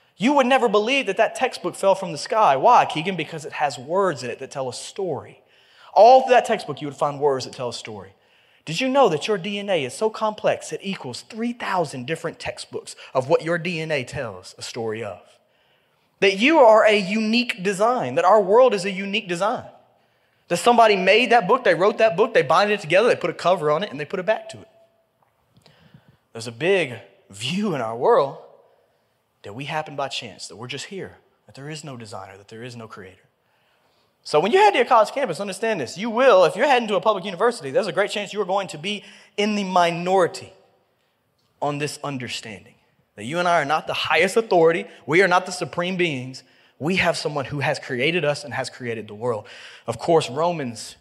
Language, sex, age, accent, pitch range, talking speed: English, male, 20-39, American, 145-215 Hz, 220 wpm